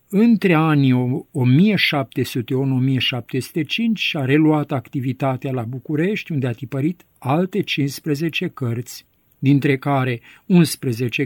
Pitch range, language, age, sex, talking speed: 125-145 Hz, Romanian, 50-69, male, 90 wpm